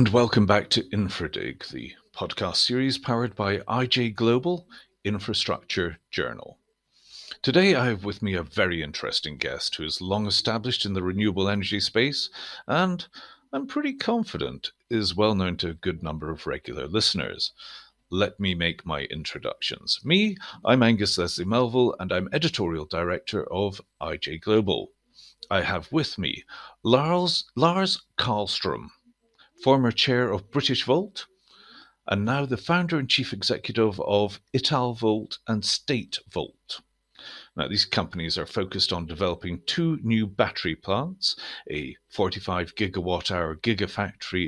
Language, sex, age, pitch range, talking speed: English, male, 50-69, 95-135 Hz, 140 wpm